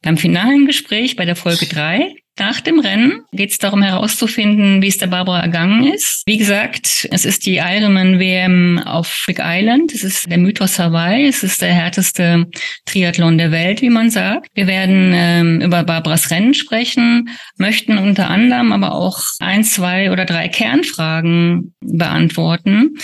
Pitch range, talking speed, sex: 170-230 Hz, 160 wpm, female